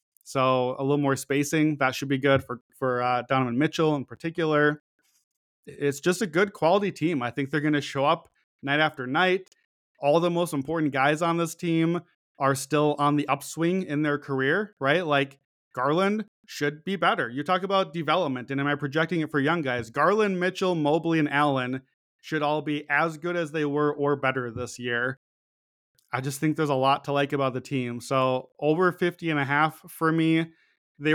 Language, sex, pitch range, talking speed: English, male, 135-160 Hz, 200 wpm